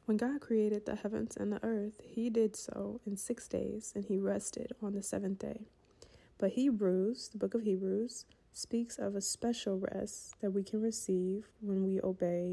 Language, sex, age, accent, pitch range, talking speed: English, female, 20-39, American, 200-225 Hz, 185 wpm